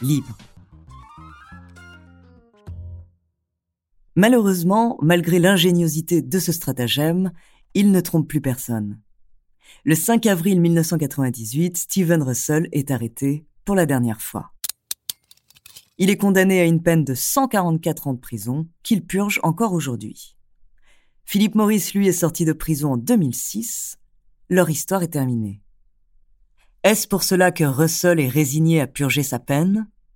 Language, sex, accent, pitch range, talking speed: French, female, French, 130-190 Hz, 125 wpm